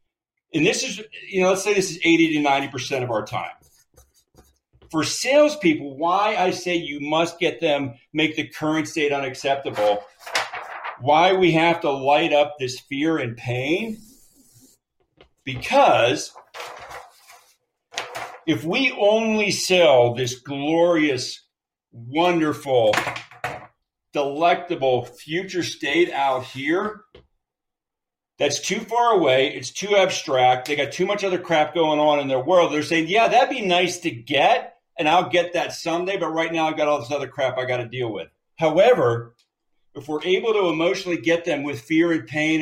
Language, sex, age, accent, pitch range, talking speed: English, male, 50-69, American, 140-180 Hz, 155 wpm